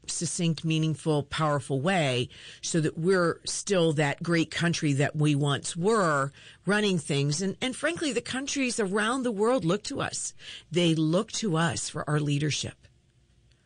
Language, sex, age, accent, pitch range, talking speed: English, female, 50-69, American, 145-195 Hz, 155 wpm